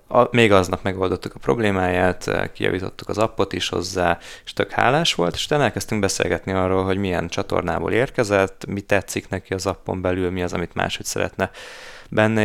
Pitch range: 90-105 Hz